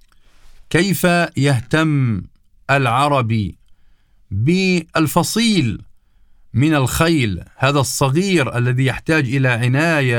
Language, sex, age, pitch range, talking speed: Arabic, male, 50-69, 110-165 Hz, 70 wpm